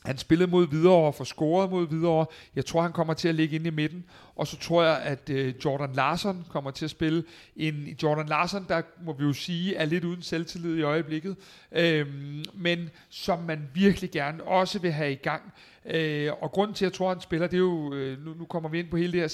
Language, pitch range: Danish, 150-175 Hz